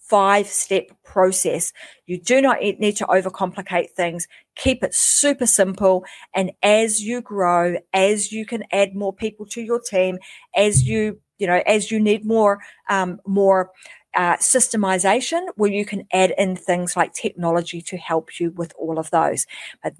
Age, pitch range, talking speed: 40-59, 175-210 Hz, 165 wpm